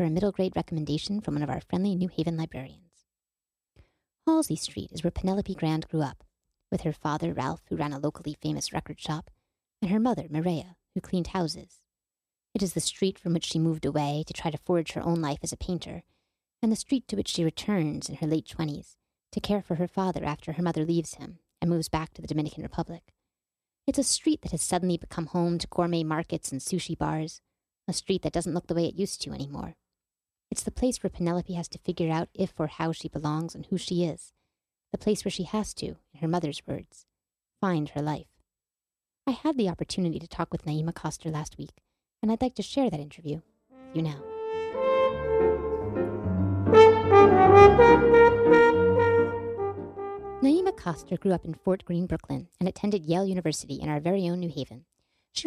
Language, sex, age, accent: English, female, 30-49, American